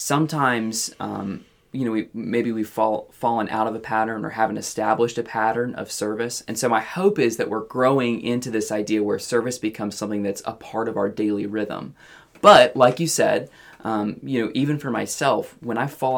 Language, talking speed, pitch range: English, 205 wpm, 110-130 Hz